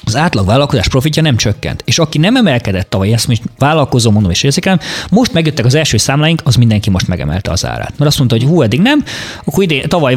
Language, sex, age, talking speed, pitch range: Hungarian, male, 20-39, 230 wpm, 110-150 Hz